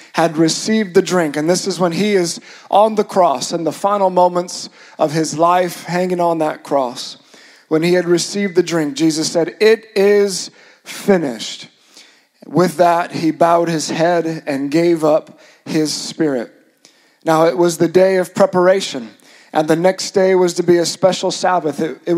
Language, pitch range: English, 165-195 Hz